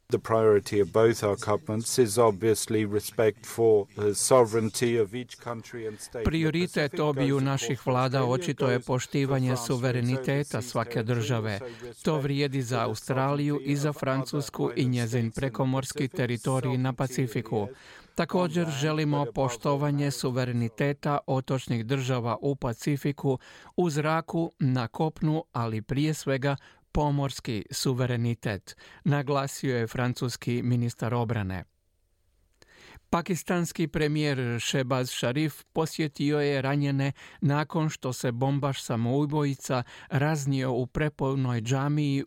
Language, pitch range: Croatian, 120-145 Hz